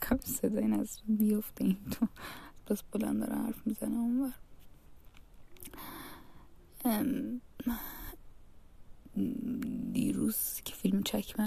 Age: 20-39